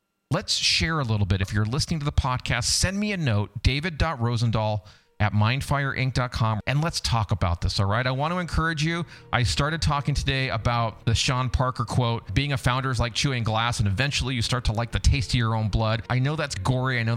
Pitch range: 105-135 Hz